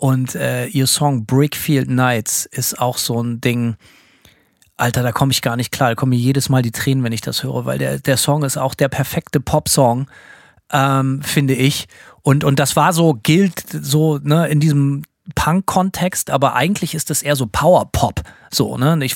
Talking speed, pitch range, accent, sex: 195 wpm, 130-155 Hz, German, male